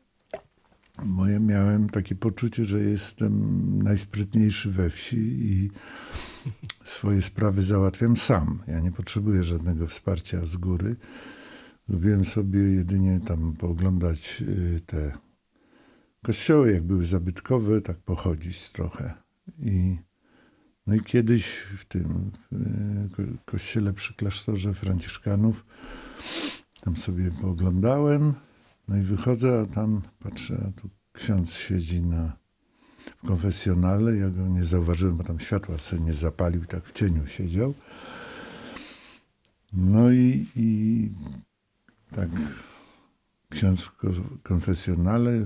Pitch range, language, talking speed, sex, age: 90-110 Hz, Polish, 110 wpm, male, 50-69